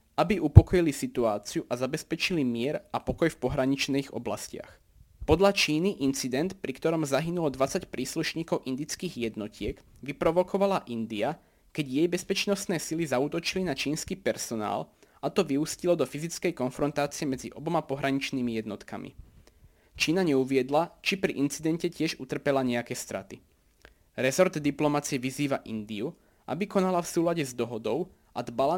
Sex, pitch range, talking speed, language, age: male, 130-165 Hz, 130 wpm, Slovak, 20-39